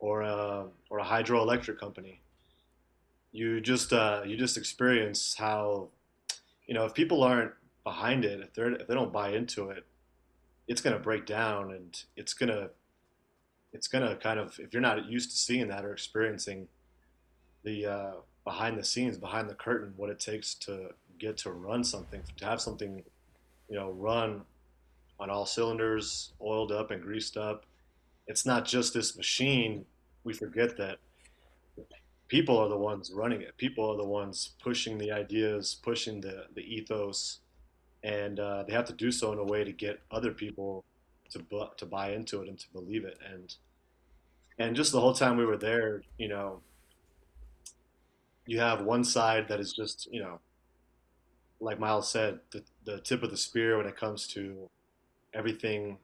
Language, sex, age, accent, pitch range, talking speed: English, male, 30-49, American, 85-110 Hz, 175 wpm